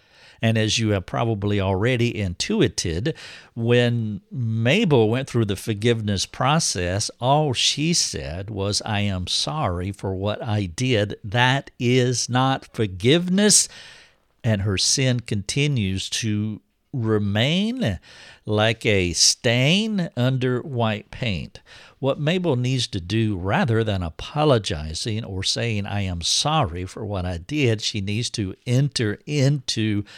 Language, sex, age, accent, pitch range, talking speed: English, male, 60-79, American, 100-130 Hz, 125 wpm